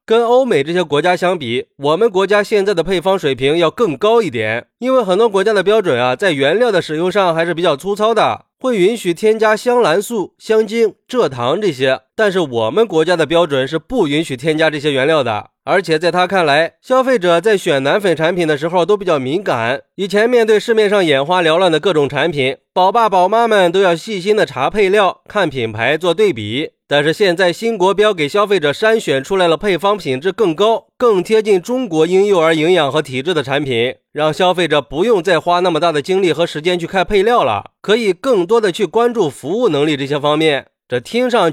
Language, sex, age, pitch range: Chinese, male, 20-39, 155-210 Hz